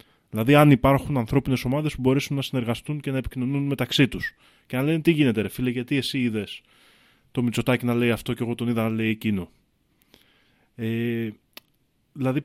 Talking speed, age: 180 wpm, 20-39